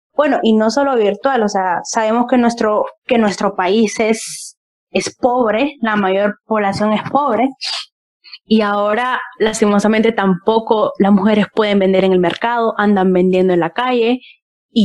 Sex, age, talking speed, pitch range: female, 10-29, 155 wpm, 195-235 Hz